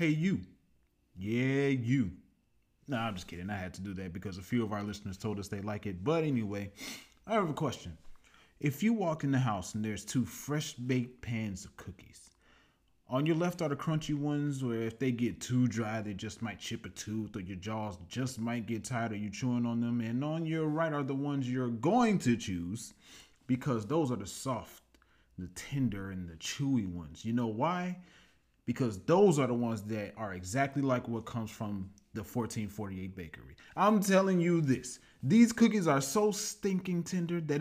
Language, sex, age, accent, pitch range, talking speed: English, male, 30-49, American, 110-150 Hz, 200 wpm